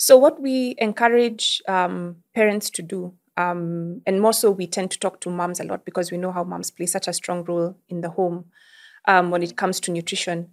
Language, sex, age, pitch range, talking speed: English, female, 20-39, 180-215 Hz, 220 wpm